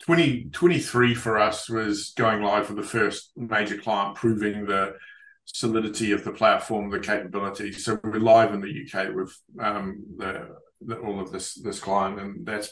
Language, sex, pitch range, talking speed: English, male, 100-120 Hz, 175 wpm